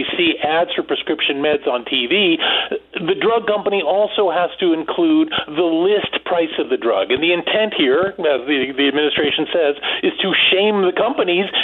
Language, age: English, 40-59